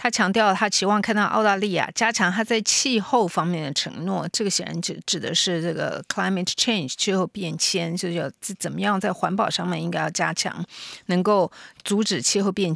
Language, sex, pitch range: English, female, 180-215 Hz